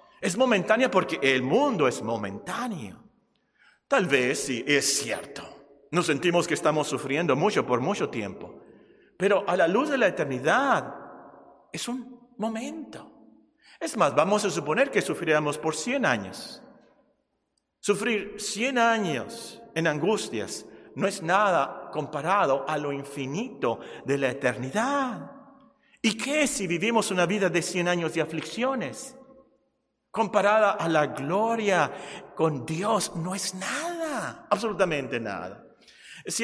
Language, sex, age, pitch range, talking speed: Spanish, male, 50-69, 145-230 Hz, 130 wpm